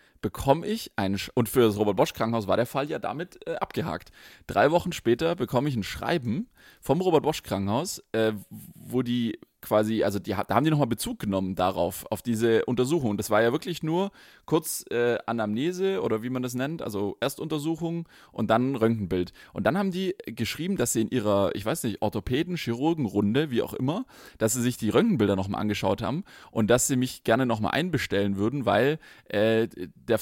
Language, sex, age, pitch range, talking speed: German, male, 30-49, 100-130 Hz, 190 wpm